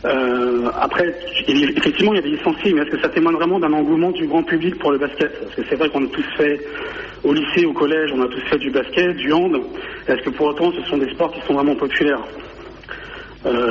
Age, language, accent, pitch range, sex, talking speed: 60-79, French, French, 135-185 Hz, male, 240 wpm